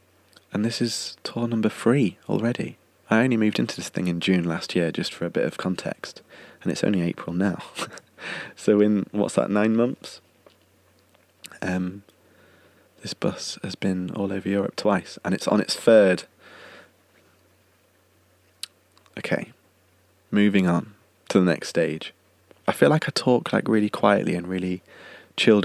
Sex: male